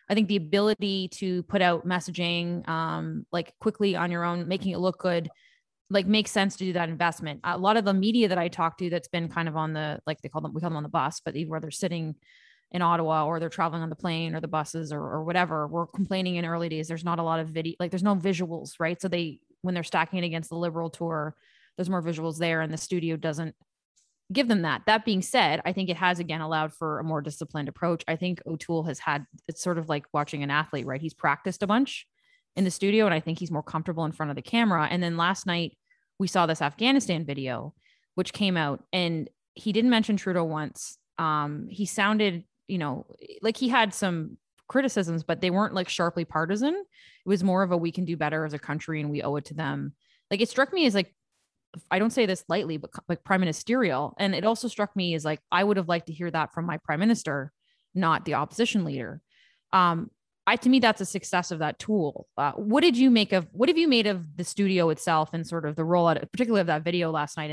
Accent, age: American, 20-39